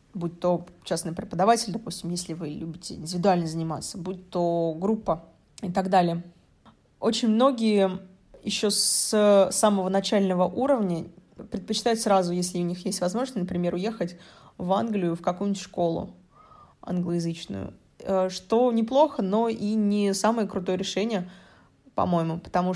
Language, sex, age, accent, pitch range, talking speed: Russian, female, 20-39, native, 175-205 Hz, 125 wpm